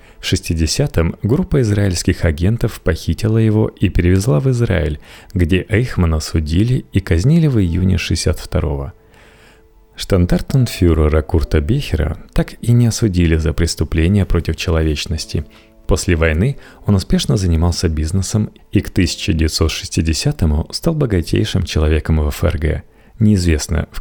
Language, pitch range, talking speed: Russian, 80-110 Hz, 115 wpm